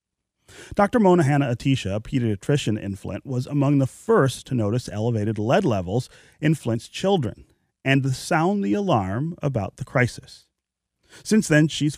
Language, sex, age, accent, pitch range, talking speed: English, male, 30-49, American, 115-150 Hz, 150 wpm